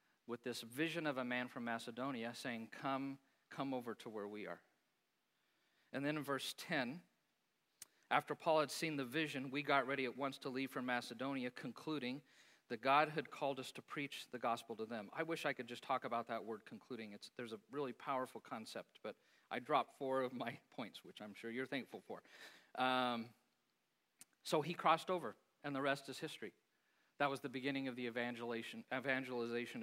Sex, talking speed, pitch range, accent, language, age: male, 190 wpm, 120-140 Hz, American, English, 50-69